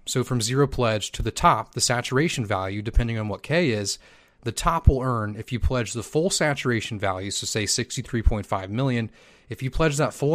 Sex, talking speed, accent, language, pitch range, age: male, 205 wpm, American, English, 115-145 Hz, 30-49